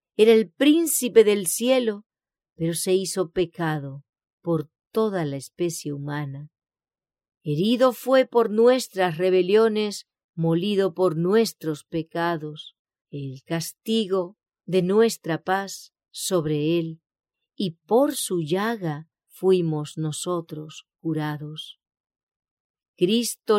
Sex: female